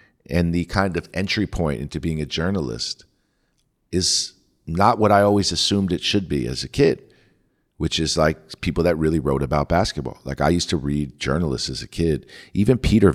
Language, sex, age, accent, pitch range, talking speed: English, male, 50-69, American, 75-95 Hz, 190 wpm